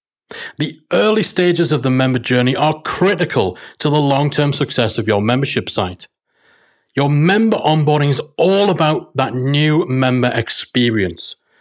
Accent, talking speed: British, 140 wpm